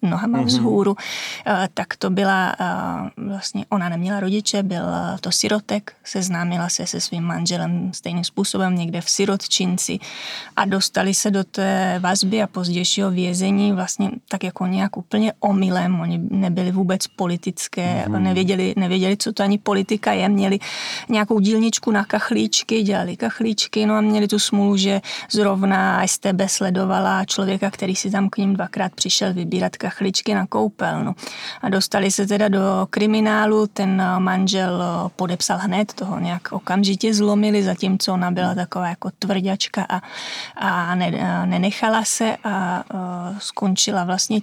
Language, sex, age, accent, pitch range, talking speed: Czech, female, 20-39, native, 185-210 Hz, 145 wpm